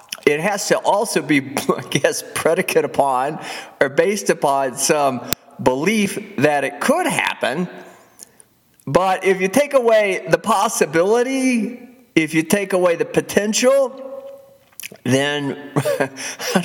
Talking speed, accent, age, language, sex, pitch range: 120 wpm, American, 50-69, English, male, 125-205 Hz